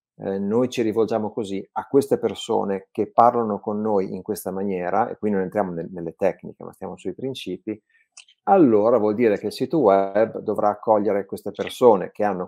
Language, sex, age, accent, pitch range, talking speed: Italian, male, 30-49, native, 95-110 Hz, 185 wpm